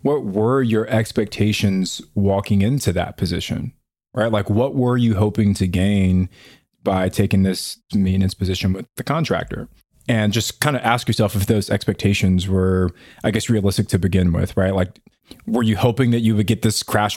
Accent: American